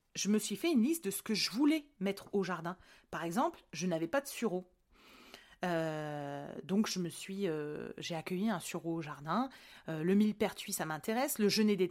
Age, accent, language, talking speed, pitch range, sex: 30-49, French, French, 205 wpm, 175-225 Hz, female